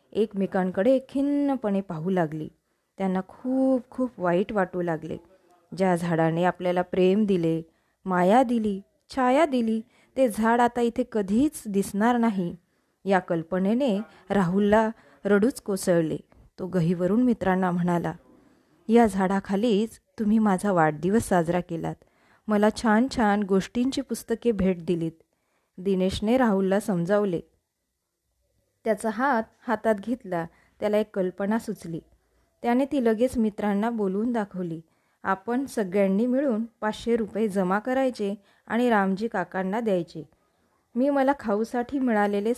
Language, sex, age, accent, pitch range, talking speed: Marathi, female, 20-39, native, 185-235 Hz, 115 wpm